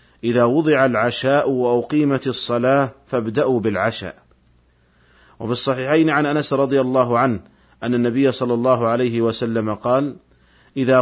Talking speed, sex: 120 wpm, male